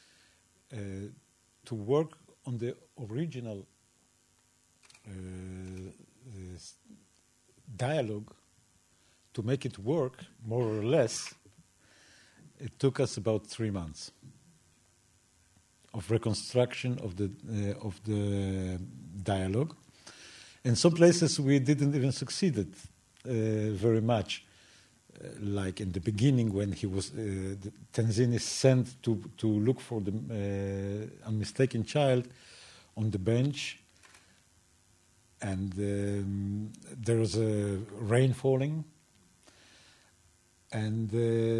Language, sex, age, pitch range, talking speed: English, male, 50-69, 100-125 Hz, 100 wpm